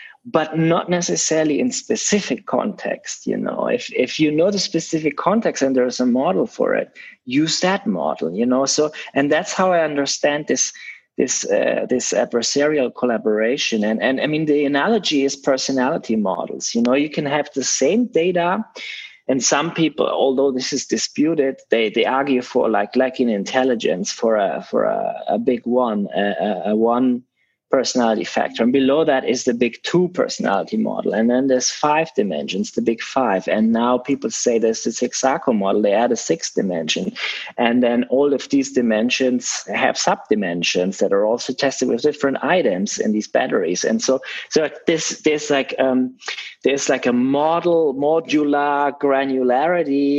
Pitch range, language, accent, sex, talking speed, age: 125-155 Hz, English, German, male, 170 wpm, 30-49